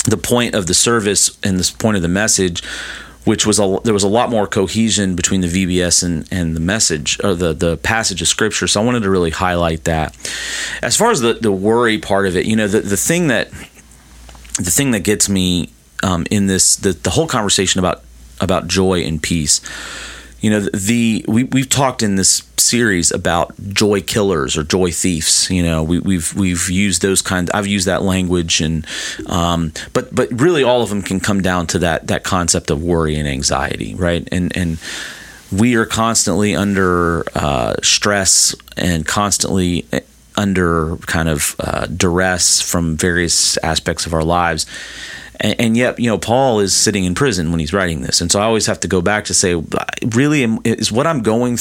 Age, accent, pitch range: 40-59, American, 85-105 Hz